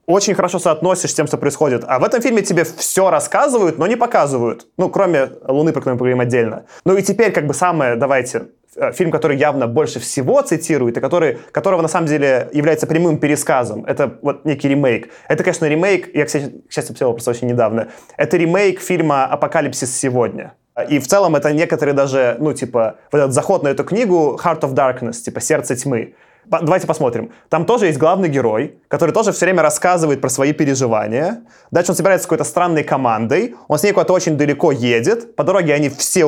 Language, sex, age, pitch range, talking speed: Russian, male, 20-39, 140-185 Hz, 195 wpm